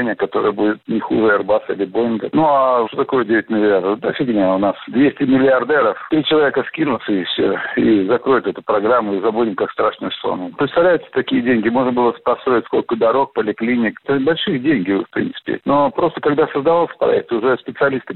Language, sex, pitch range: Russian, male, 115-155 Hz